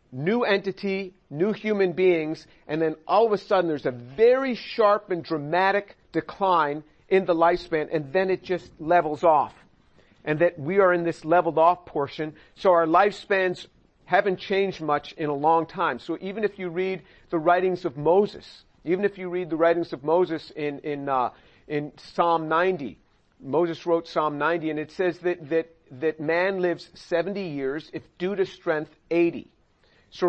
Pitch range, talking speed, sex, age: 150-185 Hz, 175 wpm, male, 50-69